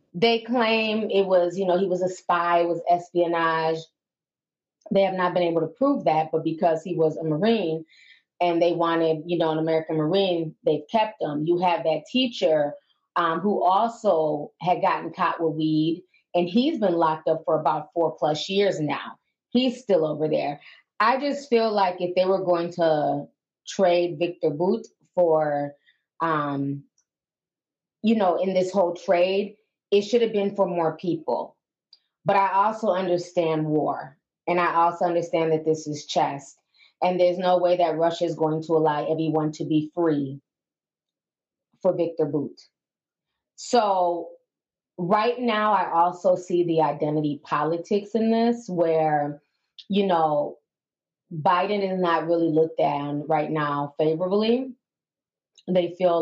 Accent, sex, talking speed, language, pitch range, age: American, female, 160 wpm, English, 160-190 Hz, 20-39